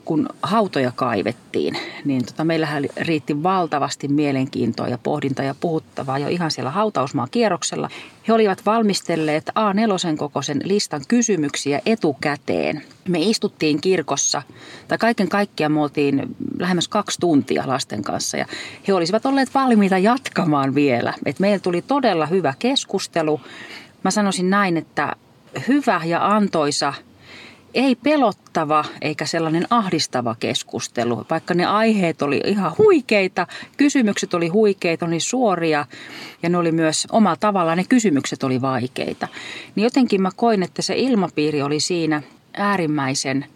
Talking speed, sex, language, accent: 130 wpm, female, Finnish, native